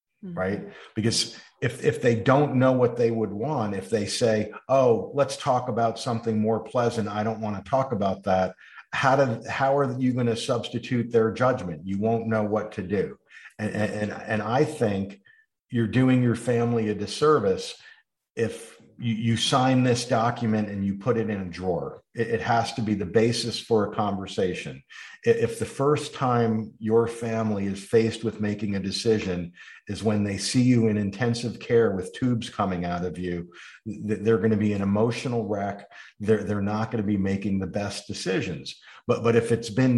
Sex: male